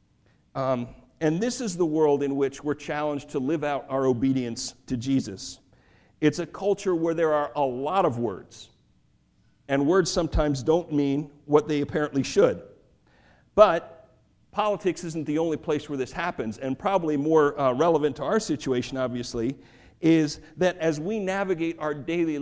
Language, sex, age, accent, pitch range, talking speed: English, male, 50-69, American, 140-170 Hz, 165 wpm